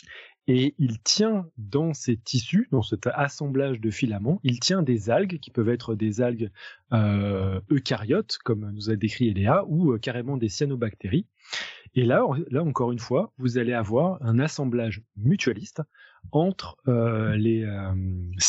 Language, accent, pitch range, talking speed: French, French, 110-145 Hz, 155 wpm